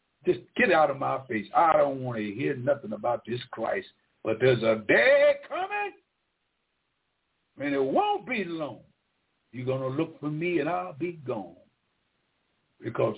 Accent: American